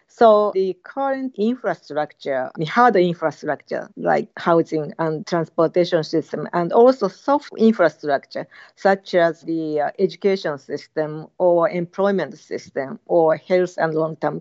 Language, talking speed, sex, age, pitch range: English, 115 wpm, female, 50-69, 165-220 Hz